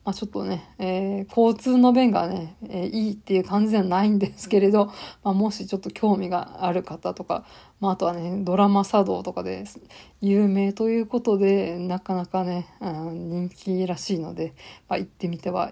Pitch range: 180-215 Hz